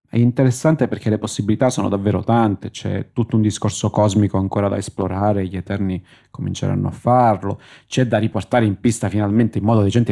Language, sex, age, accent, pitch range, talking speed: Italian, male, 30-49, native, 100-120 Hz, 180 wpm